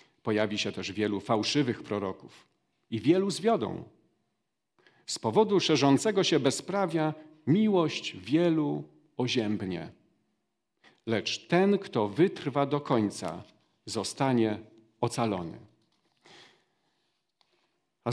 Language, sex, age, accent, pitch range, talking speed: Polish, male, 50-69, native, 110-160 Hz, 85 wpm